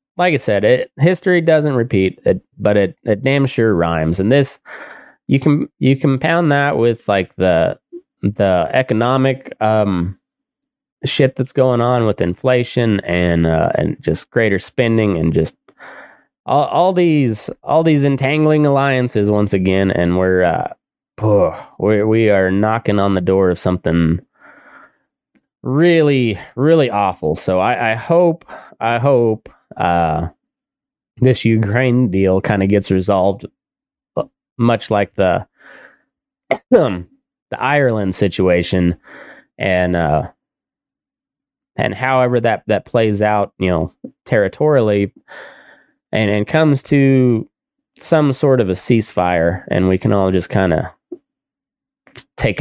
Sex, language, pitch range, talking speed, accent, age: male, English, 95-155 Hz, 130 wpm, American, 20-39